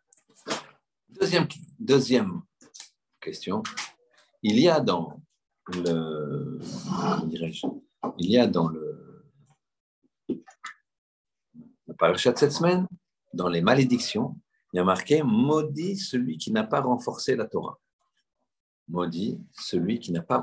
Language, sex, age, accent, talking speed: French, male, 50-69, French, 115 wpm